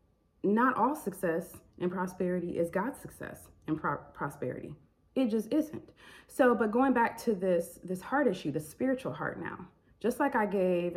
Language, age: English, 30-49